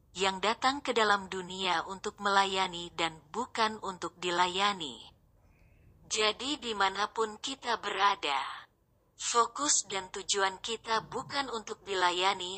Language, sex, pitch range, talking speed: Indonesian, female, 185-230 Hz, 105 wpm